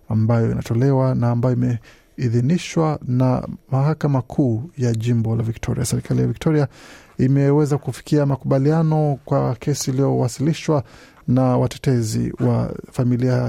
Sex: male